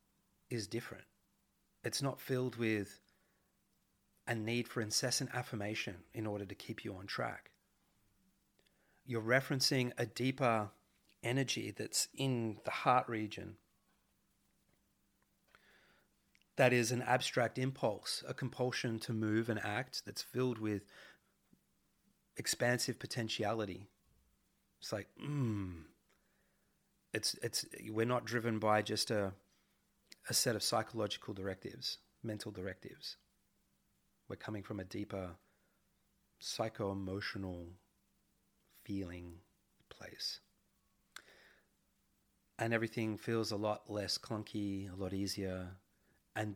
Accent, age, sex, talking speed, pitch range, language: Australian, 30-49, male, 105 wpm, 100-120 Hz, English